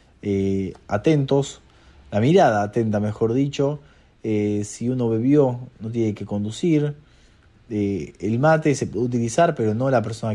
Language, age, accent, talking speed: Spanish, 30-49, Argentinian, 145 wpm